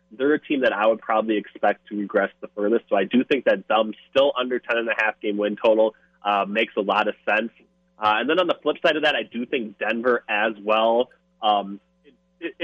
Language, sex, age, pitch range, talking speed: English, male, 20-39, 105-120 Hz, 225 wpm